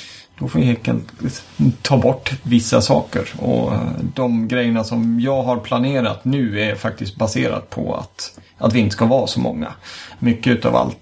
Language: Swedish